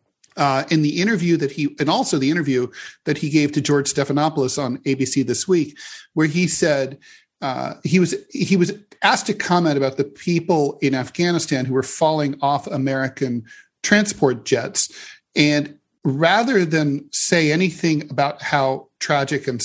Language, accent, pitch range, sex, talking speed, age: English, American, 140-180 Hz, male, 160 wpm, 40-59